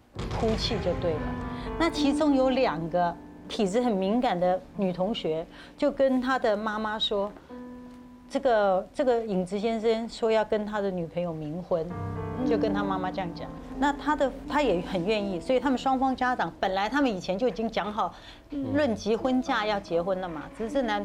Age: 30-49